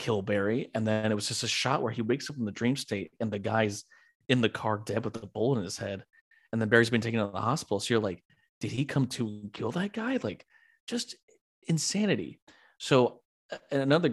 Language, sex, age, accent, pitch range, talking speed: English, male, 30-49, American, 100-135 Hz, 235 wpm